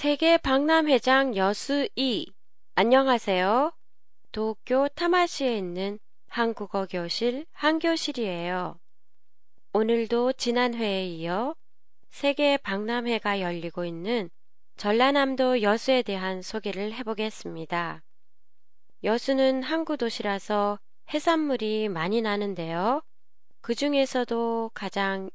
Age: 20-39